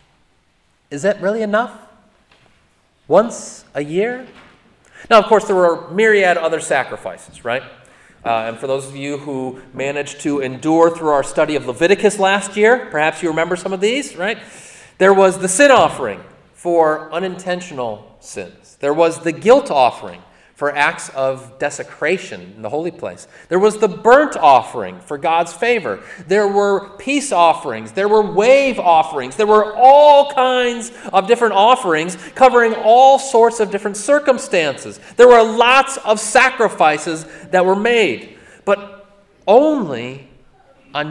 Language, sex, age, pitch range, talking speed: English, male, 30-49, 155-225 Hz, 150 wpm